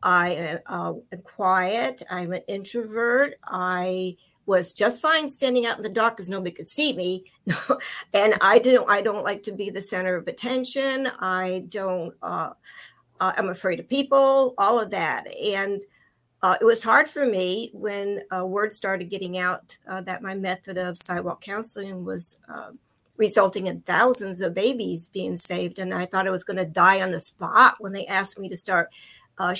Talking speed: 180 wpm